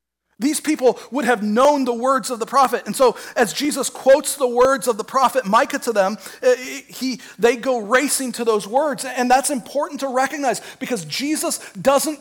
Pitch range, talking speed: 190-270 Hz, 180 wpm